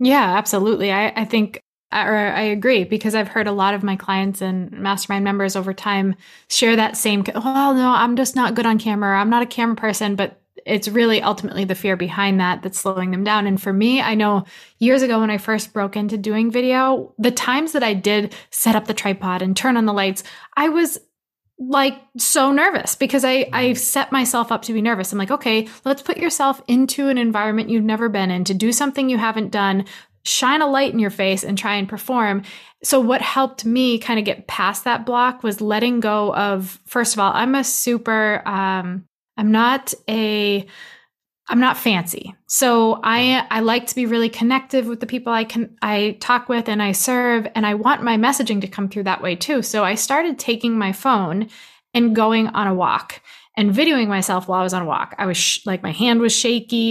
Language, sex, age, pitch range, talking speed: English, female, 20-39, 200-240 Hz, 215 wpm